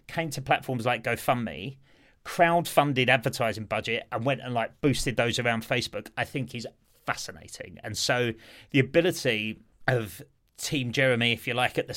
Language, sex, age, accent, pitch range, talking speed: English, male, 30-49, British, 115-135 Hz, 160 wpm